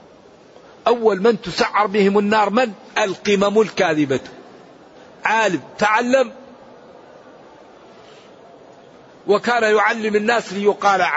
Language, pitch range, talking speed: Arabic, 180-225 Hz, 75 wpm